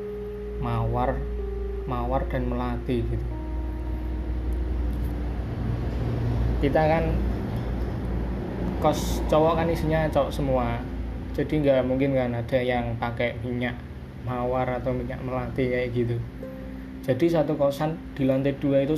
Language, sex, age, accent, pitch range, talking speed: Indonesian, male, 20-39, native, 90-140 Hz, 110 wpm